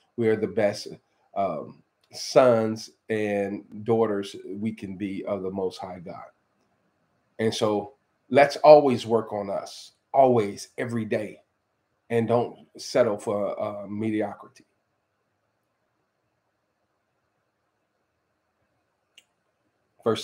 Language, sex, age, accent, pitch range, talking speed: English, male, 40-59, American, 105-120 Hz, 100 wpm